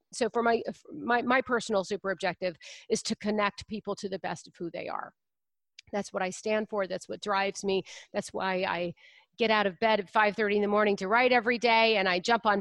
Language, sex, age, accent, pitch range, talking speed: English, female, 40-59, American, 205-245 Hz, 230 wpm